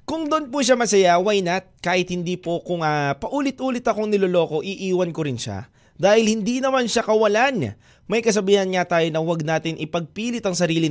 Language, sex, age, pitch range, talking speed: Filipino, male, 20-39, 140-225 Hz, 185 wpm